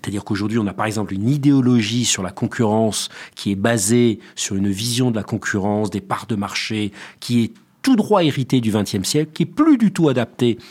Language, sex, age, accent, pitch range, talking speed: French, male, 40-59, French, 110-145 Hz, 215 wpm